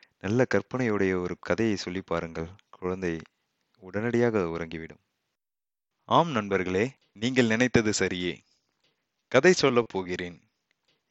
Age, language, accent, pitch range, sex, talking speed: 30-49, Tamil, native, 95-120 Hz, male, 90 wpm